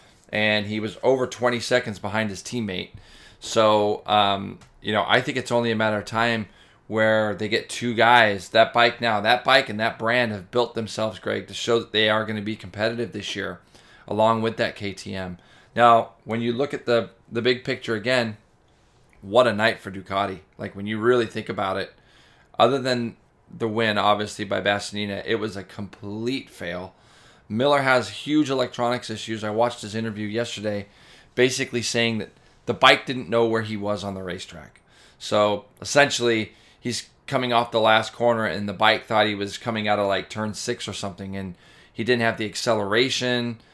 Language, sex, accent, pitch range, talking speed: English, male, American, 105-120 Hz, 190 wpm